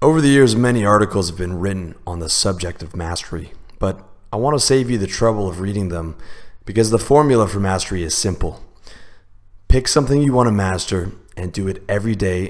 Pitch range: 90-105 Hz